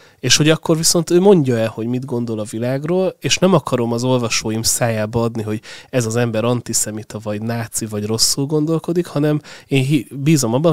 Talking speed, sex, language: 185 wpm, male, Hungarian